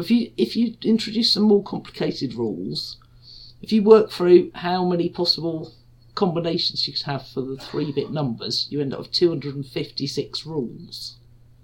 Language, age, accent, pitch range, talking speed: English, 50-69, British, 120-180 Hz, 160 wpm